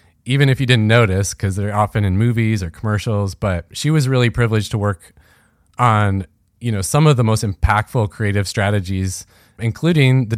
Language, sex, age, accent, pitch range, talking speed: English, male, 30-49, American, 105-125 Hz, 180 wpm